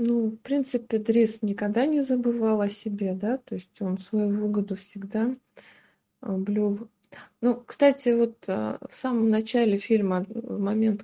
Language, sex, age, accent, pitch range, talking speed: Russian, female, 20-39, native, 185-220 Hz, 135 wpm